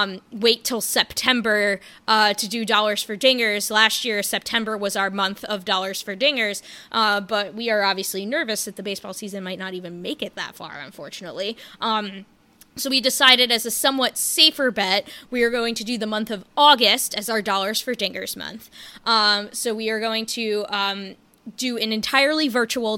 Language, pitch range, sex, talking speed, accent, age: English, 200-245 Hz, female, 190 wpm, American, 20-39